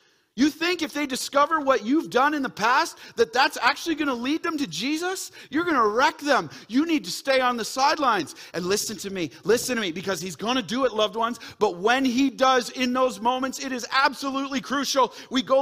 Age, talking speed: 40-59, 230 wpm